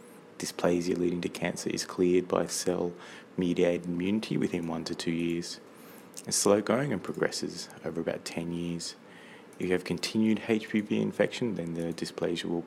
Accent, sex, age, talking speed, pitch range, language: Australian, male, 20-39, 155 wpm, 85-95 Hz, English